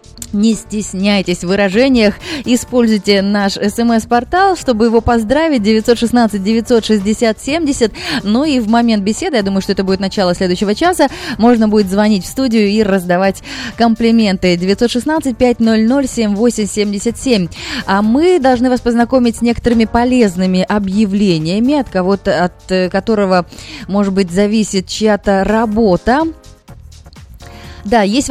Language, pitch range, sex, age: Russian, 195-240 Hz, female, 20-39